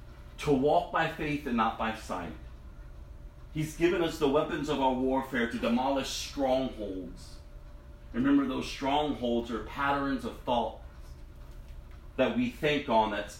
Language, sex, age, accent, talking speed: English, male, 40-59, American, 140 wpm